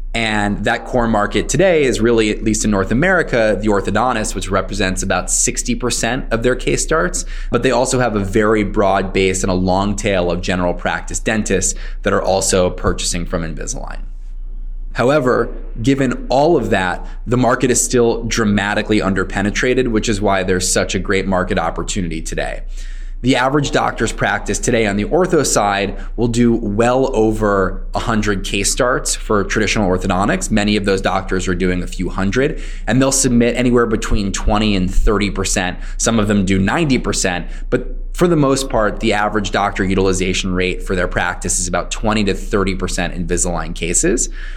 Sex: male